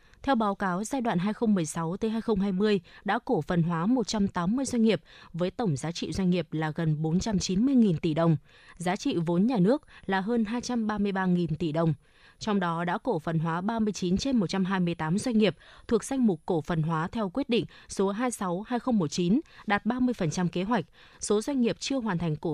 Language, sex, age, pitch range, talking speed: Vietnamese, female, 20-39, 175-225 Hz, 180 wpm